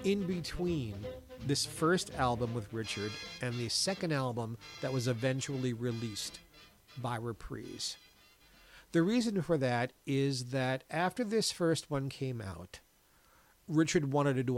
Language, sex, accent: English, male, American